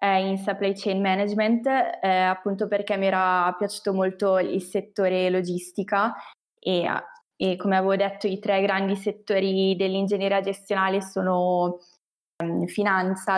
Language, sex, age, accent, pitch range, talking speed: Italian, female, 20-39, native, 185-205 Hz, 120 wpm